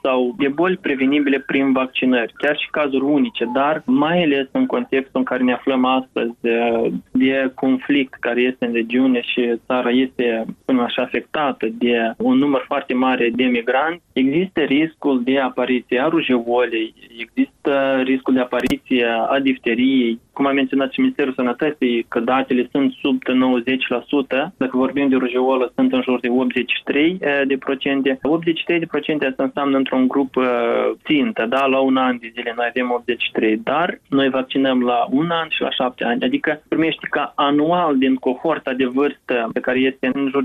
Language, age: Romanian, 20-39